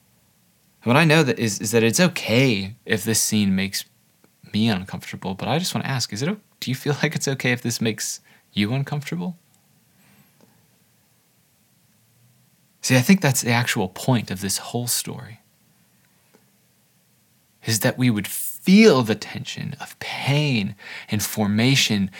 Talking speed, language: 150 wpm, English